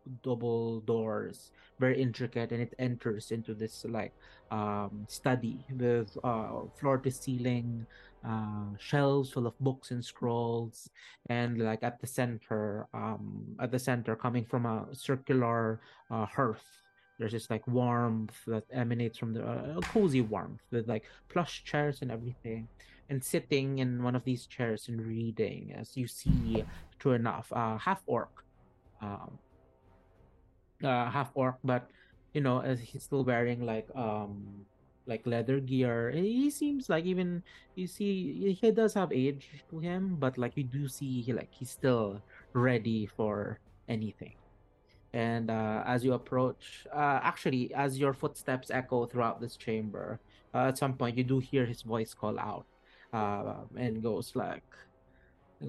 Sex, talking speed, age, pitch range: male, 155 wpm, 30-49, 110-135 Hz